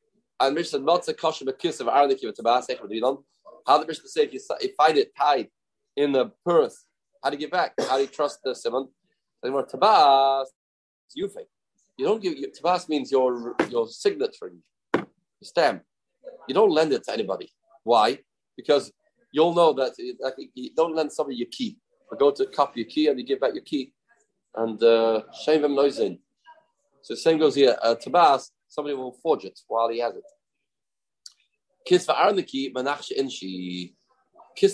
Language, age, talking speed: English, 30-49, 170 wpm